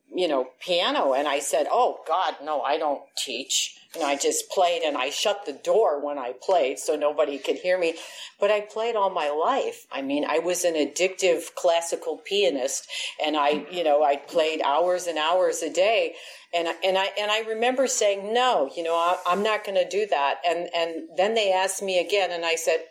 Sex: female